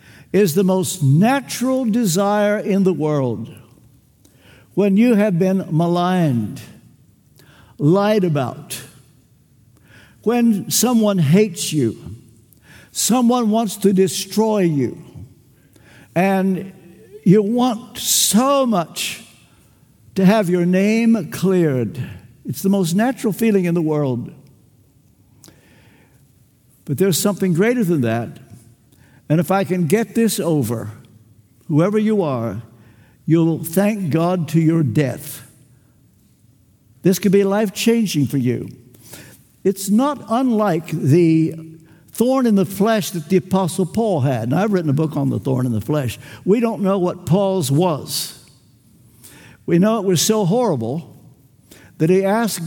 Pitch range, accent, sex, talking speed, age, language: 130-200 Hz, American, male, 125 wpm, 60-79, English